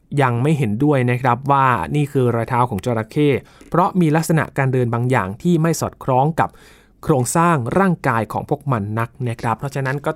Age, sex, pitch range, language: 20-39, male, 120-150 Hz, Thai